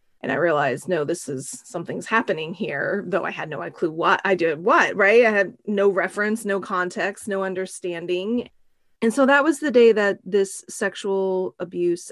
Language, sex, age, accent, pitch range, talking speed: English, female, 30-49, American, 180-215 Hz, 185 wpm